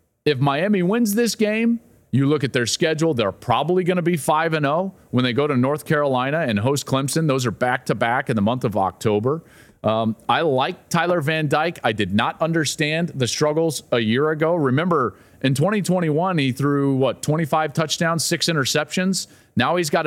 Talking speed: 185 wpm